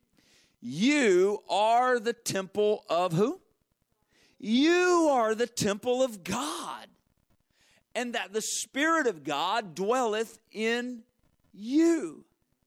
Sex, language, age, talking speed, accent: male, English, 50-69, 100 wpm, American